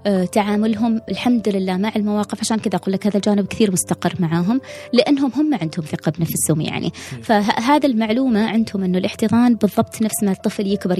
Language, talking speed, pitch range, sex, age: Arabic, 165 wpm, 180-270 Hz, female, 20-39